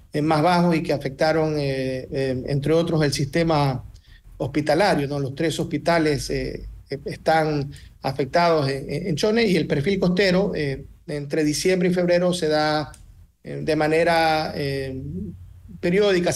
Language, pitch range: Spanish, 140-170 Hz